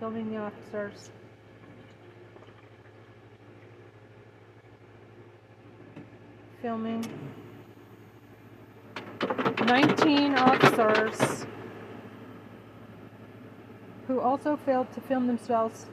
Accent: American